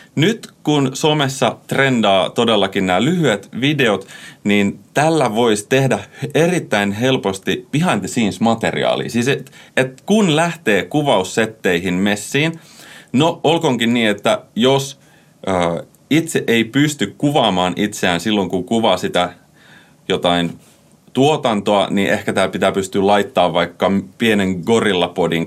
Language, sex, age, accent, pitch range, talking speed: Finnish, male, 30-49, native, 90-130 Hz, 115 wpm